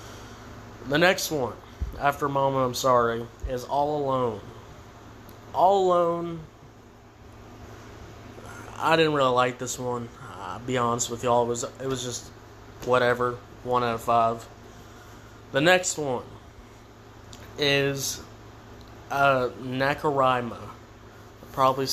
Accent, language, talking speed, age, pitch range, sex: American, English, 110 wpm, 20-39, 115-135 Hz, male